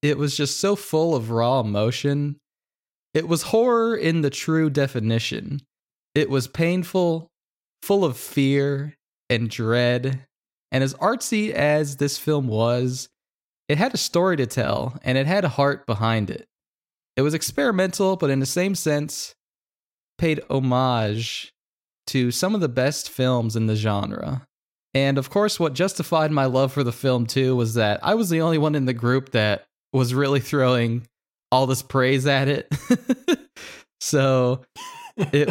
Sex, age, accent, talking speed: male, 20-39, American, 160 wpm